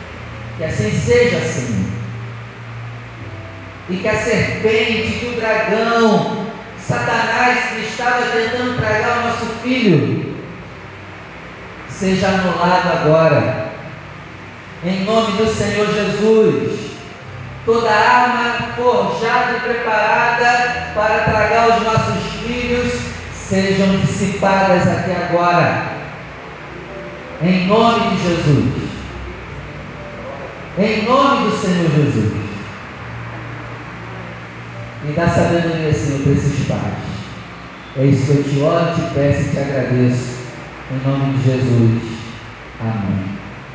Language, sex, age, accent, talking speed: Portuguese, male, 40-59, Brazilian, 100 wpm